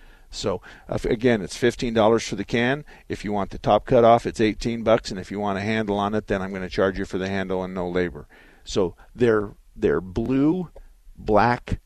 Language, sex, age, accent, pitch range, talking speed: English, male, 50-69, American, 90-115 Hz, 225 wpm